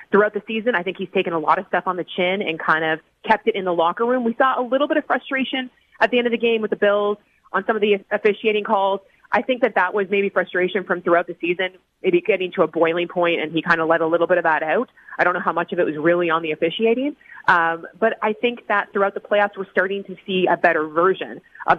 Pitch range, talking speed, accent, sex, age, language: 180-225 Hz, 280 wpm, American, female, 30-49, English